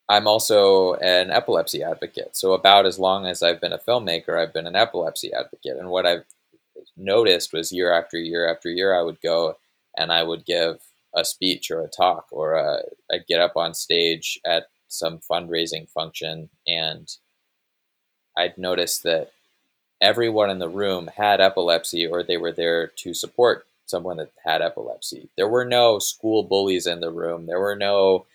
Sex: male